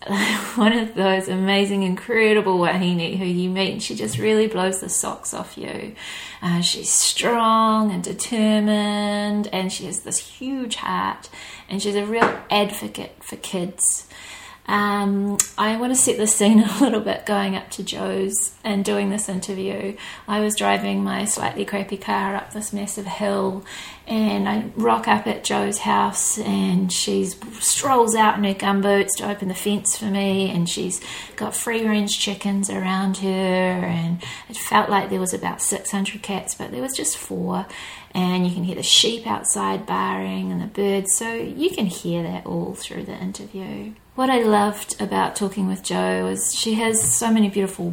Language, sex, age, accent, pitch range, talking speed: English, female, 30-49, Australian, 185-215 Hz, 175 wpm